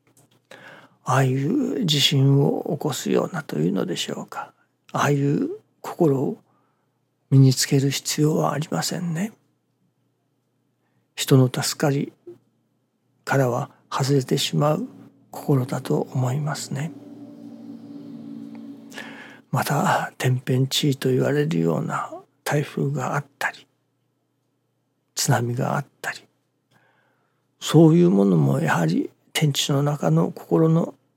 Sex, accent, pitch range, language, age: male, native, 135-165 Hz, Japanese, 60-79